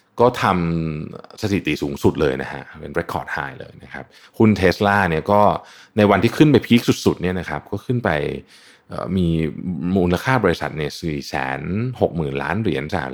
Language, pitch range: Thai, 80-105 Hz